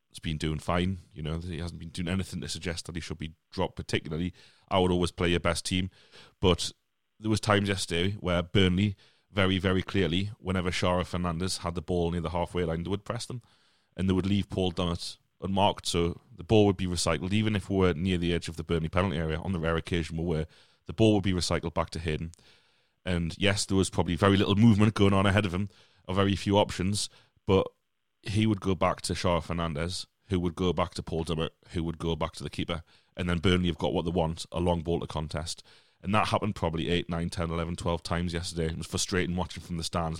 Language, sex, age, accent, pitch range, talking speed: English, male, 30-49, British, 85-100 Hz, 235 wpm